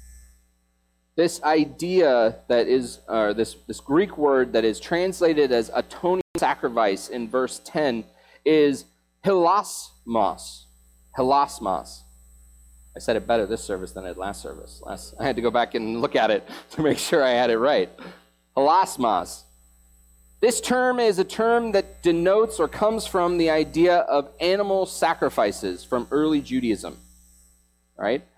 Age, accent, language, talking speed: 30-49, American, English, 145 wpm